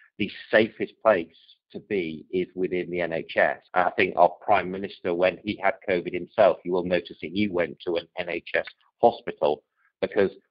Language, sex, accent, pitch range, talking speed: English, male, British, 85-105 Hz, 170 wpm